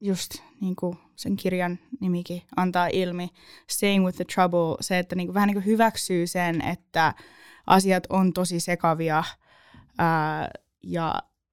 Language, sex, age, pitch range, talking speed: Finnish, female, 10-29, 165-200 Hz, 145 wpm